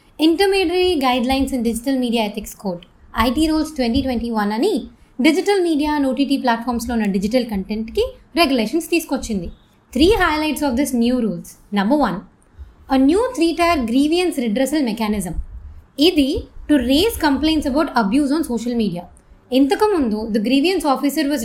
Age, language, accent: 20-39, Telugu, native